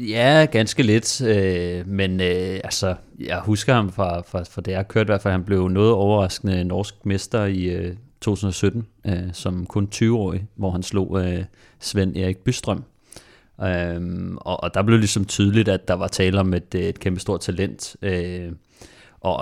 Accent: native